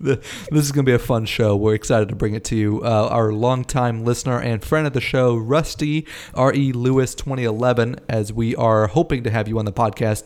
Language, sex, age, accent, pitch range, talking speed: English, male, 30-49, American, 105-125 Hz, 215 wpm